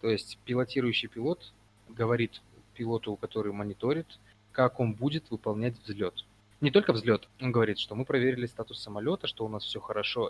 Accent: native